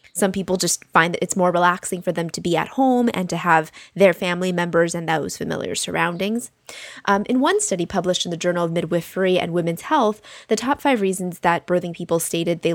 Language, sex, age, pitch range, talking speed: English, female, 20-39, 175-225 Hz, 215 wpm